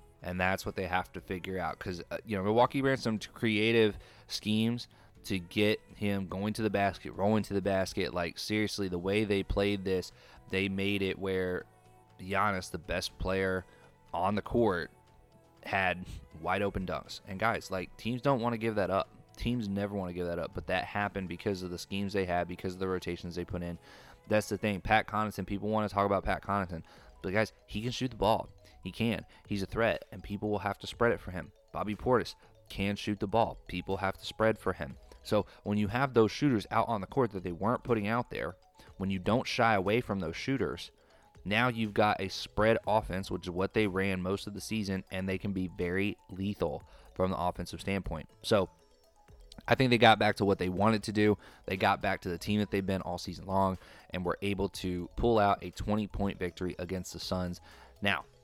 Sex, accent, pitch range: male, American, 90-105 Hz